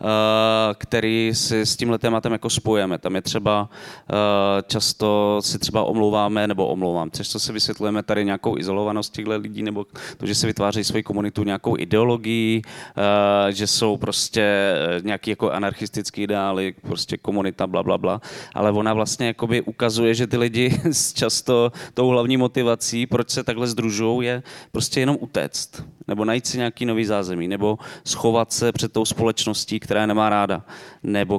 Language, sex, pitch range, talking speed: Czech, male, 105-125 Hz, 155 wpm